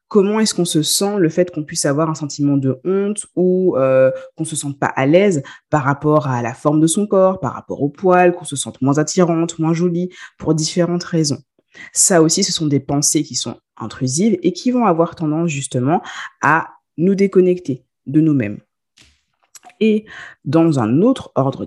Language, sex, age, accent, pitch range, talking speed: French, female, 20-39, French, 140-190 Hz, 195 wpm